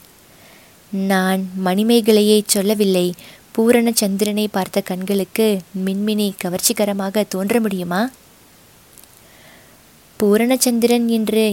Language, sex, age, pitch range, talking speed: Tamil, female, 20-39, 190-225 Hz, 60 wpm